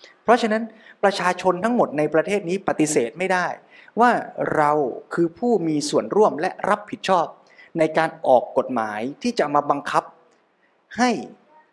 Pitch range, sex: 135-205 Hz, male